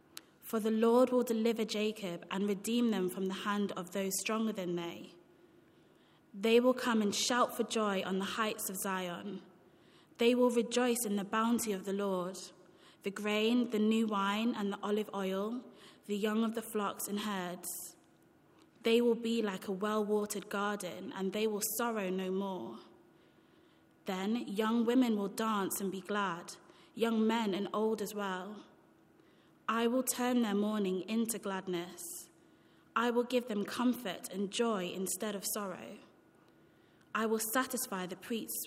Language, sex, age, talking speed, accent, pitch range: English, female, 20-39, 160 wpm, British, 190-225 Hz